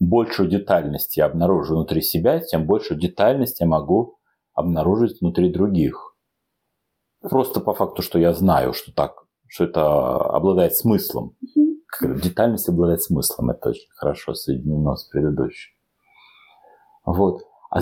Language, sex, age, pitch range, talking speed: Russian, male, 40-59, 85-115 Hz, 125 wpm